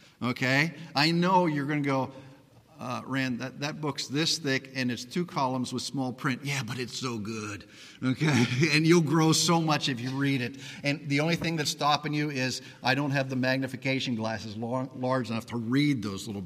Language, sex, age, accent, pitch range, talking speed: English, male, 50-69, American, 130-175 Hz, 205 wpm